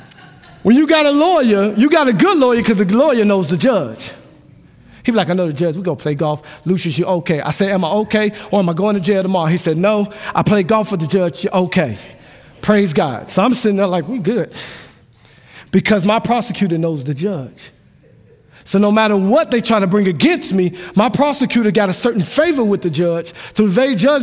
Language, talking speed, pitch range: English, 230 wpm, 170-245 Hz